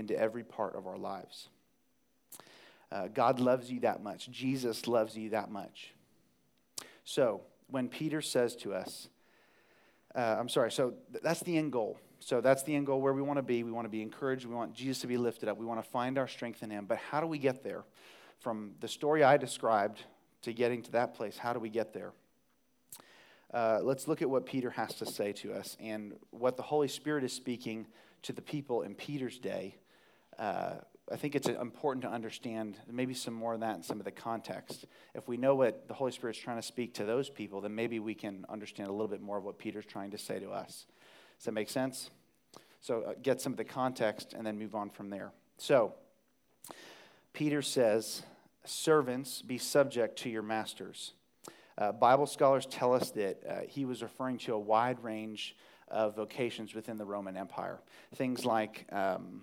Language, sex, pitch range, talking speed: English, male, 110-130 Hz, 205 wpm